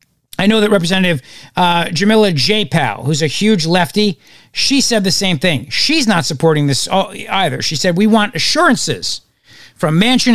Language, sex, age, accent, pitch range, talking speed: English, male, 50-69, American, 150-205 Hz, 175 wpm